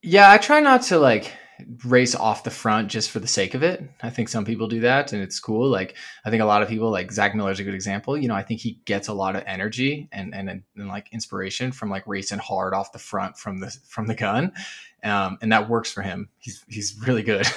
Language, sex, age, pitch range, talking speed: English, male, 20-39, 100-125 Hz, 260 wpm